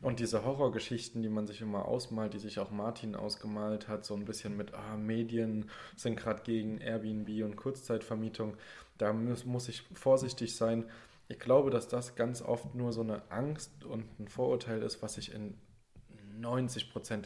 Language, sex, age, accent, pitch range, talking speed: German, male, 20-39, German, 110-125 Hz, 170 wpm